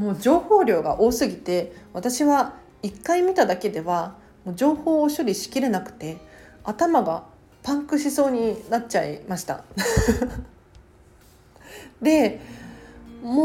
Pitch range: 180-295 Hz